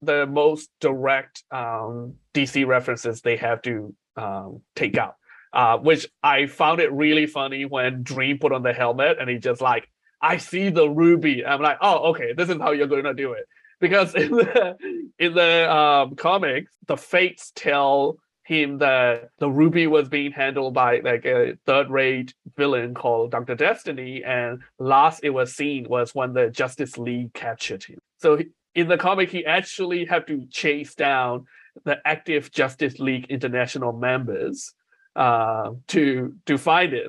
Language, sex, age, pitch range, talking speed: English, male, 30-49, 130-175 Hz, 170 wpm